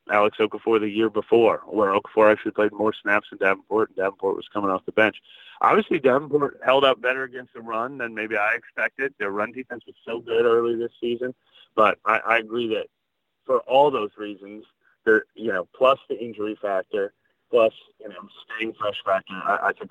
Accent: American